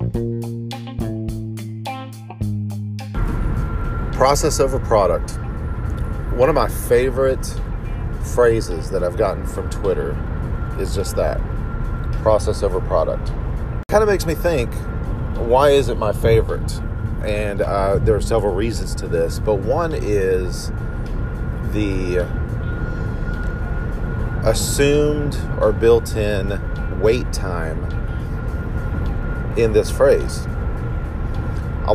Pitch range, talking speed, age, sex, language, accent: 100-115 Hz, 95 wpm, 40-59, male, English, American